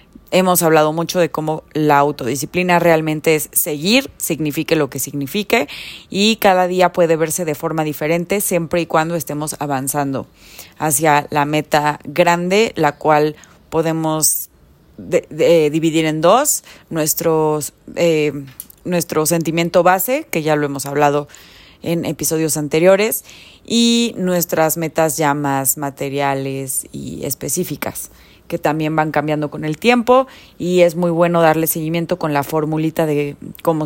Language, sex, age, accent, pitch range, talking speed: Spanish, female, 30-49, Mexican, 150-175 Hz, 135 wpm